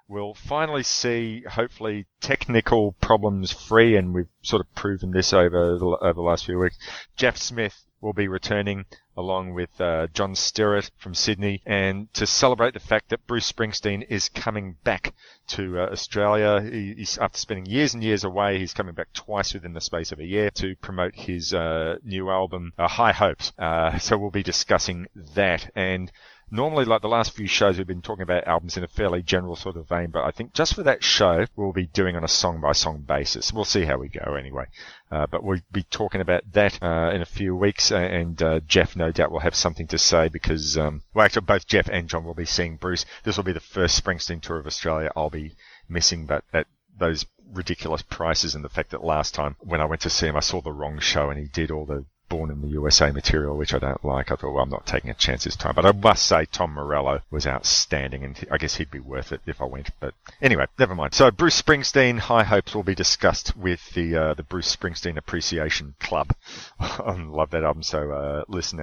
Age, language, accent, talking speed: 30-49, English, Australian, 225 wpm